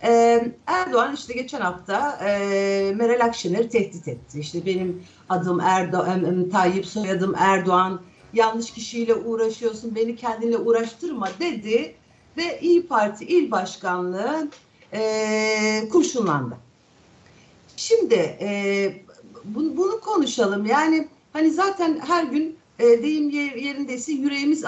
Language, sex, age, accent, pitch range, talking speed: Turkish, female, 60-79, native, 200-285 Hz, 110 wpm